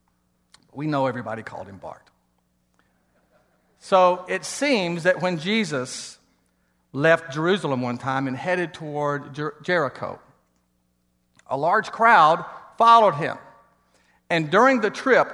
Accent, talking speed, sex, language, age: American, 115 wpm, male, English, 50-69